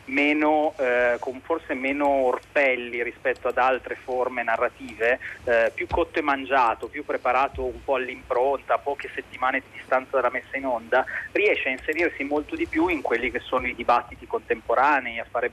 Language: Italian